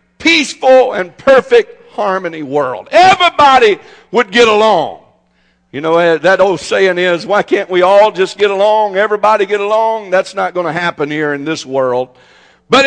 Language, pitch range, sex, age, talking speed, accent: English, 150-250 Hz, male, 50-69, 165 wpm, American